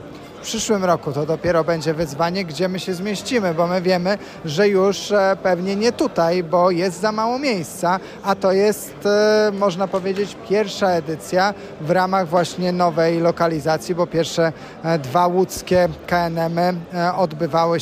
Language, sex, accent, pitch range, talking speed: Polish, male, native, 165-195 Hz, 140 wpm